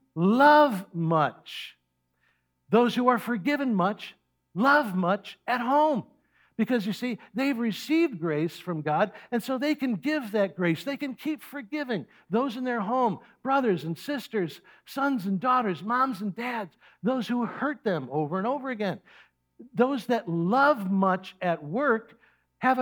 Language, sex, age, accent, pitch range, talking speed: English, male, 60-79, American, 180-260 Hz, 155 wpm